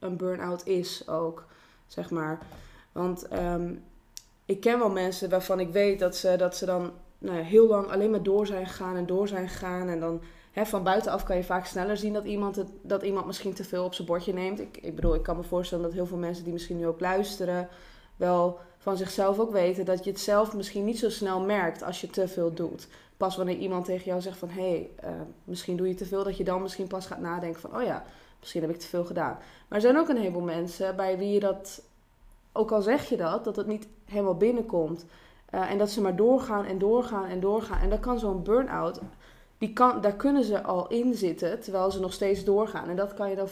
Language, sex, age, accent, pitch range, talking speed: Dutch, female, 20-39, Dutch, 180-200 Hz, 230 wpm